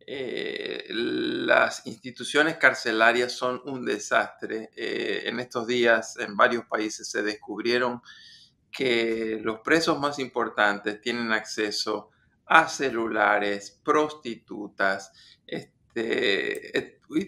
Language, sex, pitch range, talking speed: Spanish, male, 115-150 Hz, 95 wpm